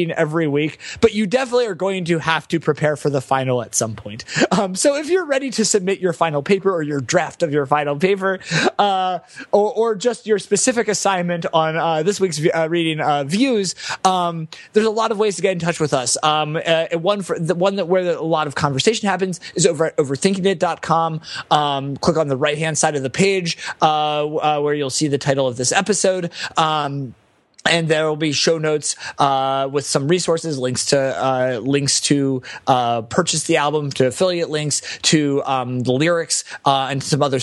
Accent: American